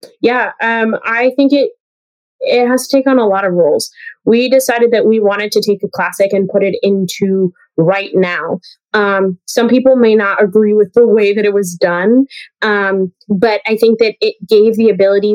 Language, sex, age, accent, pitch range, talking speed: English, female, 20-39, American, 200-245 Hz, 200 wpm